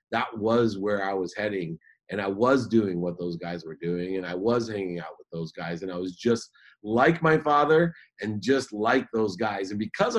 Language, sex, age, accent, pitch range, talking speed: English, male, 30-49, American, 95-120 Hz, 220 wpm